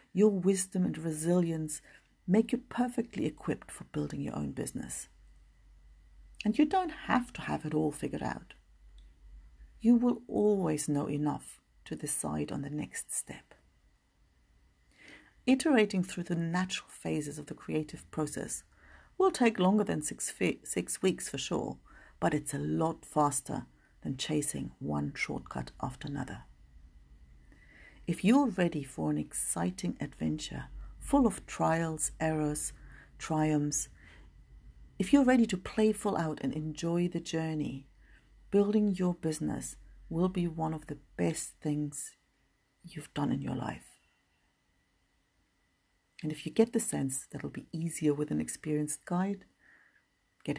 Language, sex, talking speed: English, female, 140 wpm